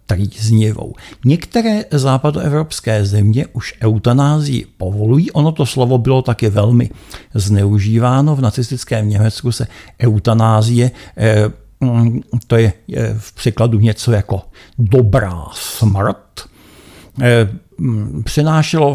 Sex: male